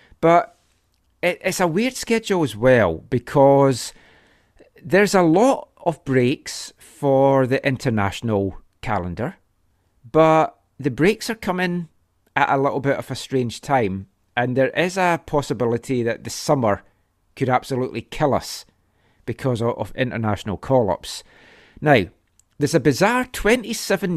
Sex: male